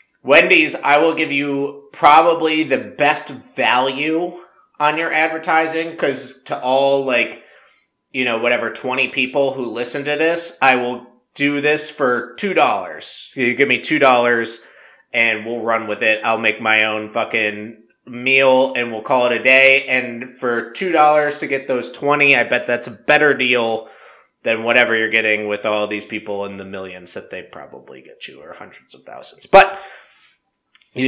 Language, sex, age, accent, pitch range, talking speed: English, male, 20-39, American, 115-145 Hz, 170 wpm